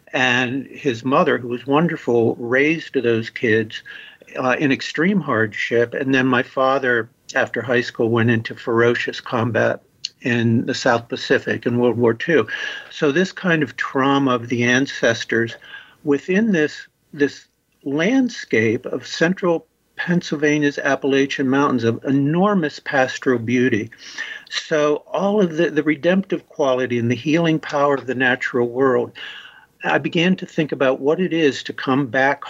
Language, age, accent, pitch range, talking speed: English, 50-69, American, 125-150 Hz, 145 wpm